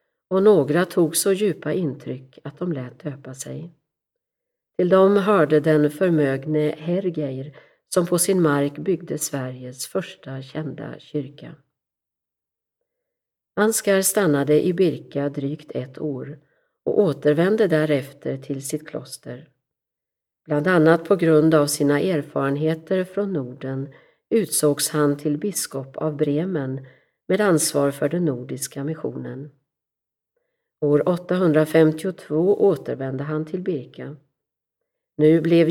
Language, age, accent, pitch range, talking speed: Swedish, 50-69, native, 140-185 Hz, 115 wpm